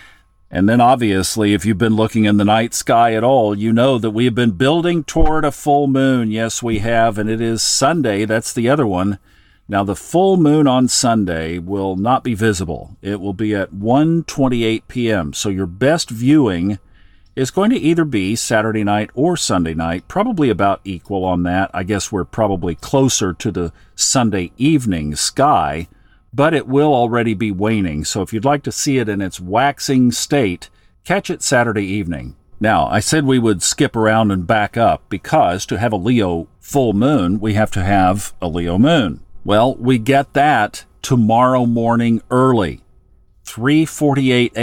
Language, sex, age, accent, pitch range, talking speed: English, male, 50-69, American, 100-130 Hz, 175 wpm